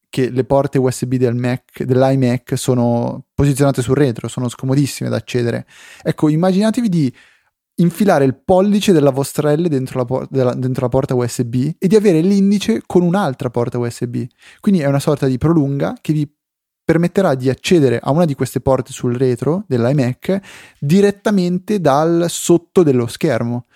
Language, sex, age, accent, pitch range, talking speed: Italian, male, 20-39, native, 125-155 Hz, 160 wpm